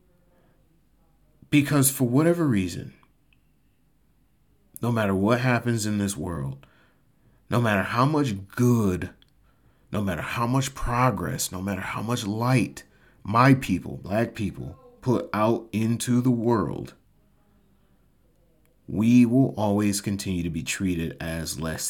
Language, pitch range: English, 100-125 Hz